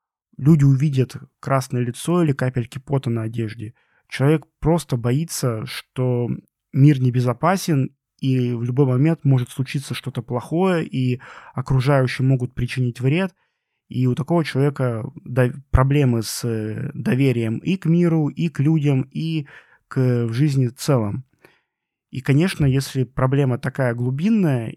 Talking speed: 130 wpm